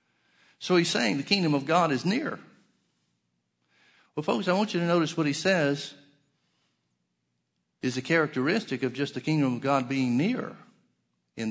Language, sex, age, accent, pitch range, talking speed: English, male, 60-79, American, 130-175 Hz, 160 wpm